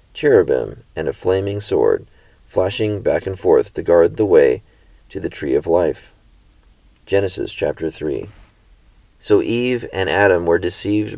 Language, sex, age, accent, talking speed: English, male, 30-49, American, 145 wpm